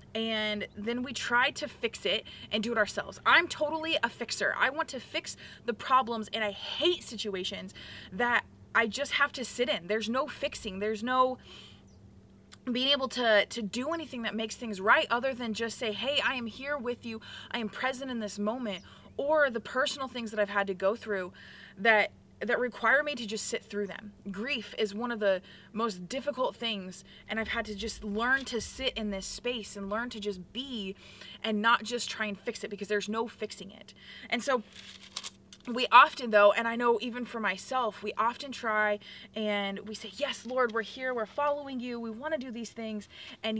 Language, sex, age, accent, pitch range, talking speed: English, female, 20-39, American, 210-255 Hz, 205 wpm